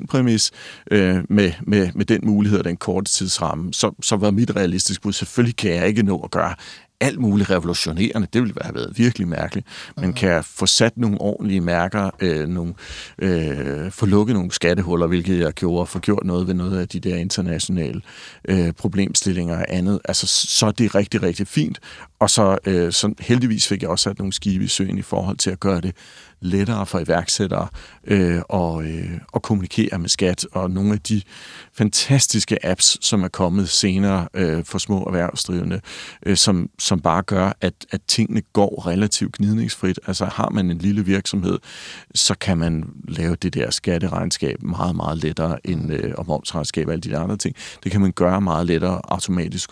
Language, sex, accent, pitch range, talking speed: Danish, male, native, 90-105 Hz, 190 wpm